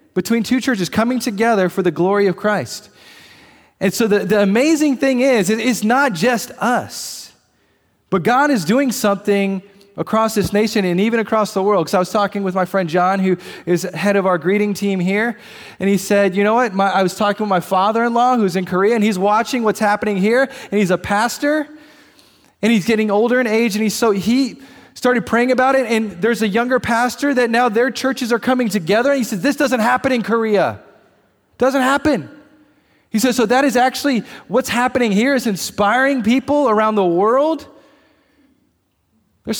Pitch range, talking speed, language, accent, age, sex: 195-250 Hz, 195 wpm, English, American, 20-39, male